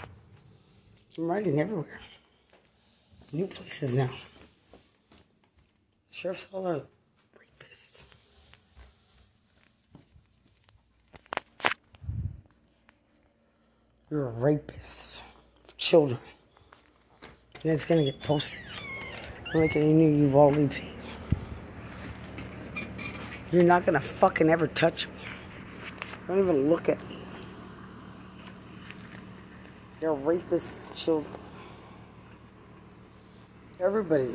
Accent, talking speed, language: American, 75 wpm, English